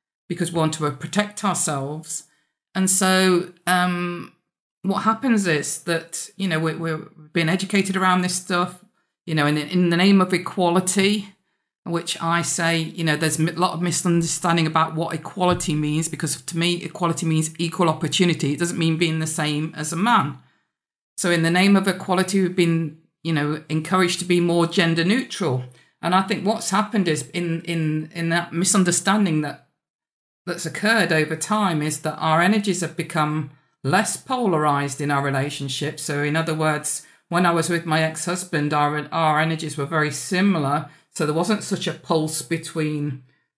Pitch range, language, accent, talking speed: 150-180 Hz, English, British, 175 wpm